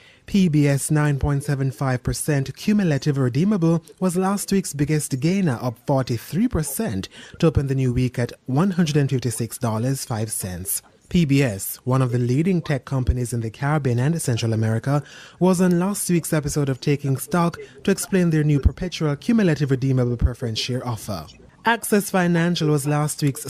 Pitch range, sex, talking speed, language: 130-175 Hz, male, 140 wpm, English